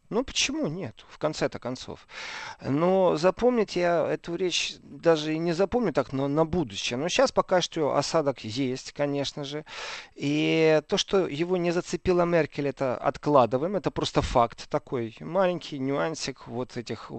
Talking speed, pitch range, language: 155 wpm, 125-160 Hz, Russian